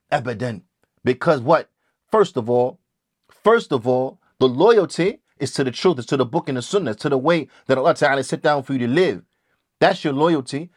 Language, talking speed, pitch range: English, 210 wpm, 145-195 Hz